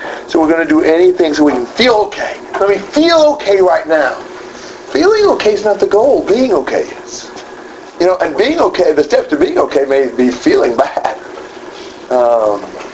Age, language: 50-69, English